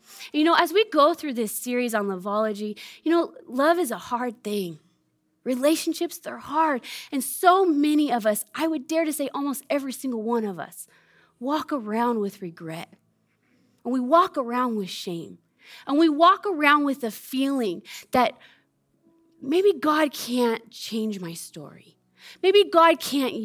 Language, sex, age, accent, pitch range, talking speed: English, female, 20-39, American, 215-320 Hz, 160 wpm